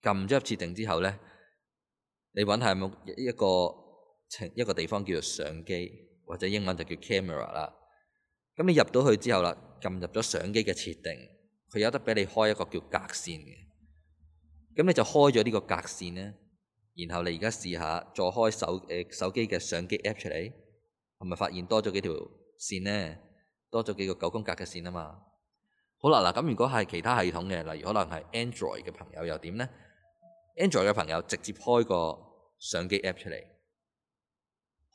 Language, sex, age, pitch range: Chinese, male, 20-39, 85-115 Hz